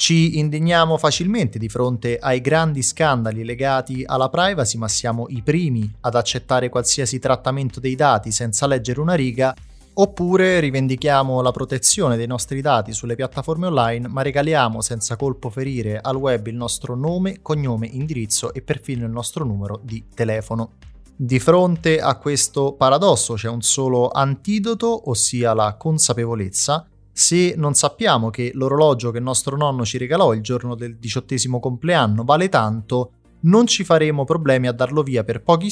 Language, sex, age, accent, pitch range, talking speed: Italian, male, 20-39, native, 120-150 Hz, 155 wpm